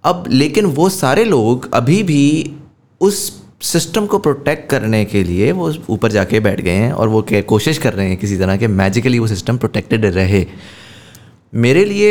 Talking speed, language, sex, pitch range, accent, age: 135 wpm, English, male, 105-135 Hz, Indian, 20-39